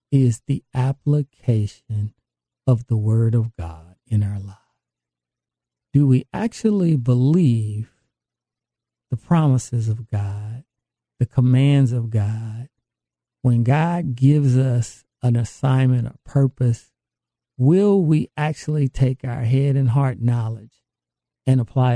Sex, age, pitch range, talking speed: male, 50-69, 120-145 Hz, 115 wpm